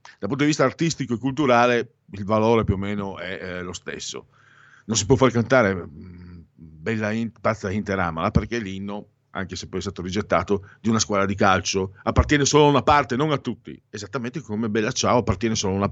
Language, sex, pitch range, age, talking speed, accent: Italian, male, 95-120 Hz, 50-69, 200 wpm, native